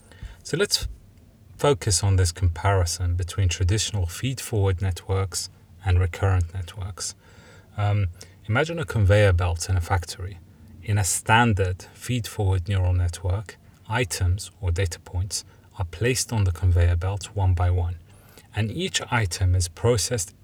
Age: 30-49